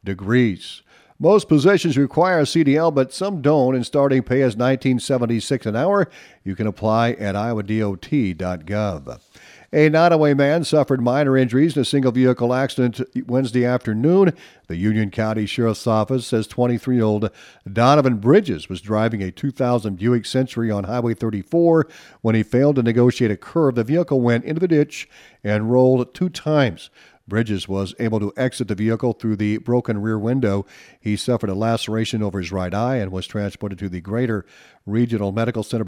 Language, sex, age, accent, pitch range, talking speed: English, male, 50-69, American, 110-145 Hz, 165 wpm